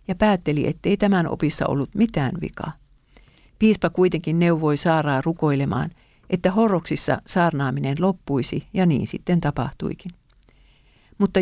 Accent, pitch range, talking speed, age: native, 145-180 Hz, 115 wpm, 50-69